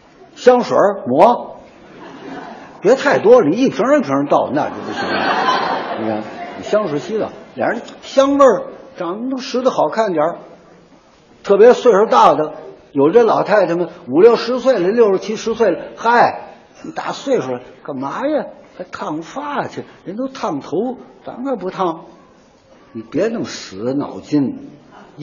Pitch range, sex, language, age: 205-265 Hz, male, Chinese, 60-79